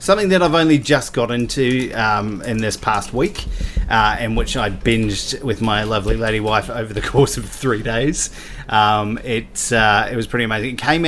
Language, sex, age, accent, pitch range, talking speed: English, male, 30-49, Australian, 110-130 Hz, 200 wpm